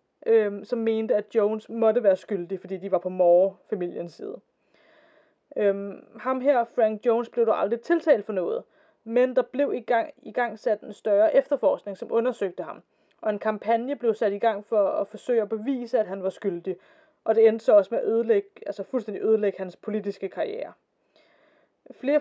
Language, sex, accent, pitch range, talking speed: Danish, female, native, 210-260 Hz, 185 wpm